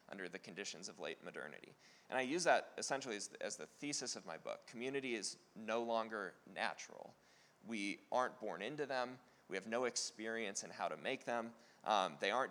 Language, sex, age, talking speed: English, male, 30-49, 190 wpm